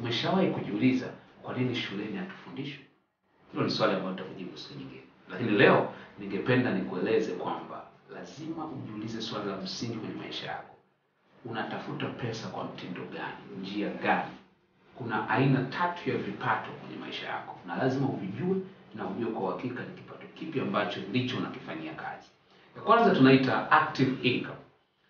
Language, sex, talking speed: Swahili, male, 150 wpm